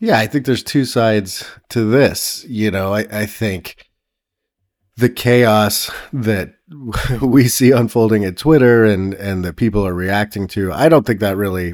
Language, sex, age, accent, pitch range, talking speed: English, male, 30-49, American, 95-115 Hz, 170 wpm